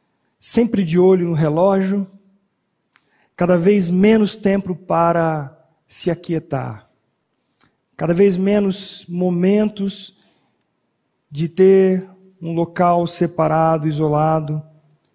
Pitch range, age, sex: 155-190 Hz, 40-59, male